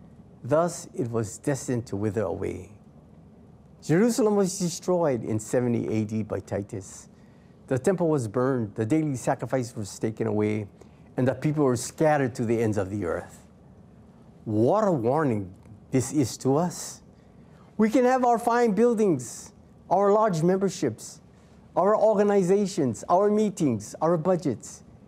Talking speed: 140 wpm